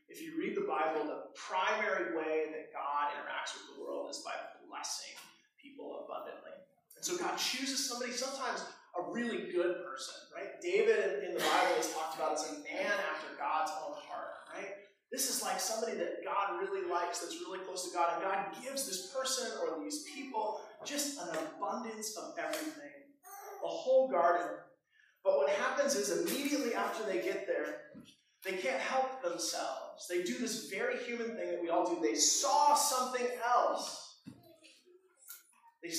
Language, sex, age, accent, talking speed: English, male, 30-49, American, 170 wpm